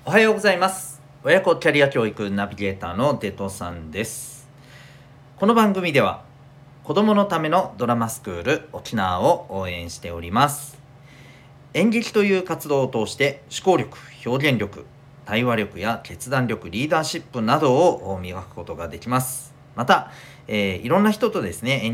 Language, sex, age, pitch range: Japanese, male, 40-59, 105-165 Hz